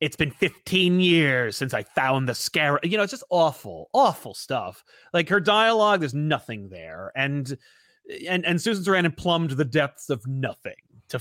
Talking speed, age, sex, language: 175 wpm, 30-49, male, English